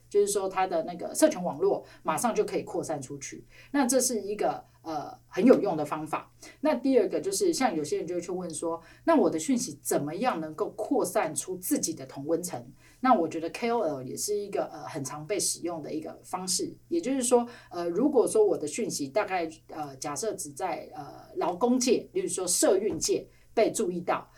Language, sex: Chinese, female